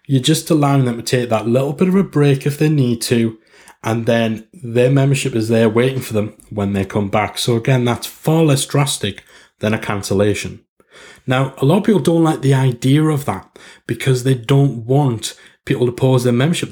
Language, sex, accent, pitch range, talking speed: English, male, British, 115-140 Hz, 210 wpm